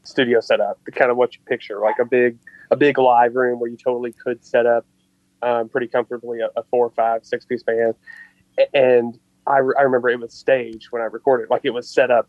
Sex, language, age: male, English, 30-49